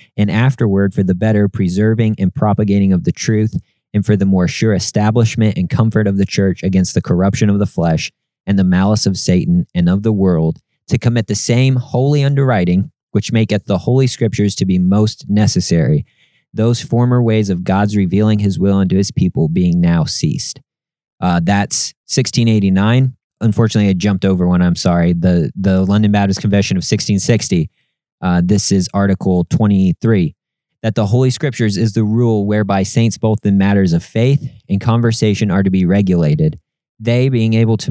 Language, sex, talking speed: English, male, 175 wpm